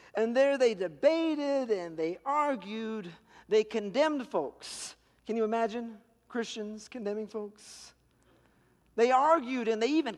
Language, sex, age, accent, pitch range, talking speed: English, male, 50-69, American, 205-280 Hz, 125 wpm